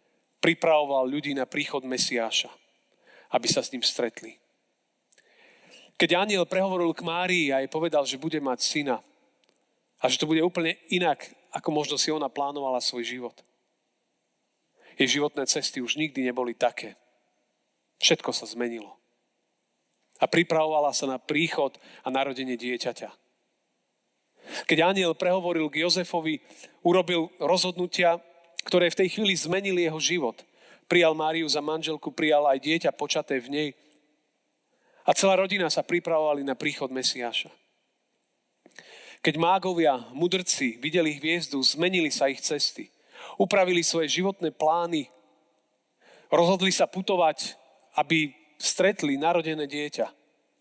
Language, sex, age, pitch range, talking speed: Slovak, male, 40-59, 140-175 Hz, 125 wpm